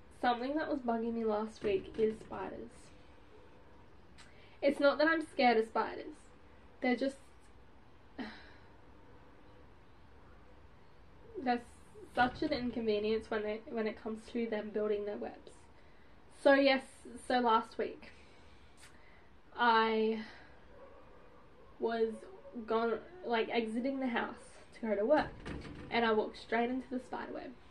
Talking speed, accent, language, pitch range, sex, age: 120 wpm, Australian, English, 220-270 Hz, female, 10-29